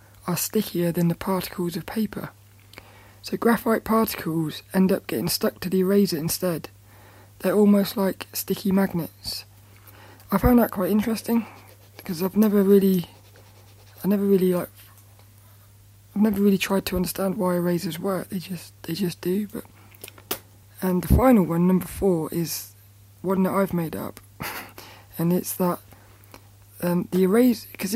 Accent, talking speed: British, 150 wpm